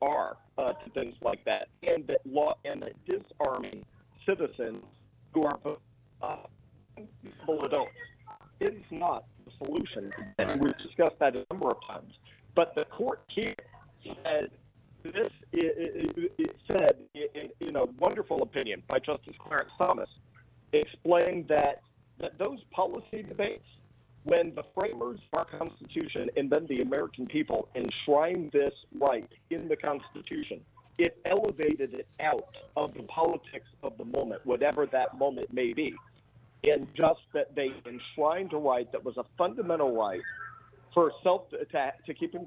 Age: 50-69